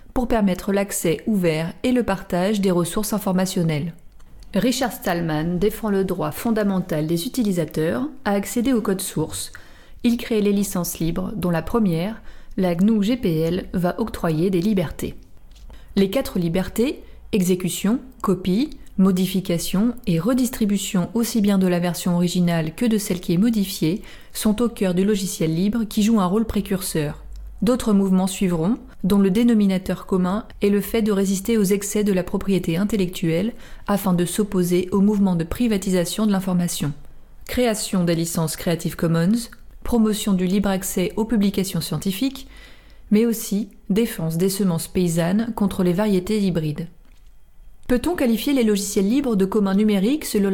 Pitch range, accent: 180-220 Hz, French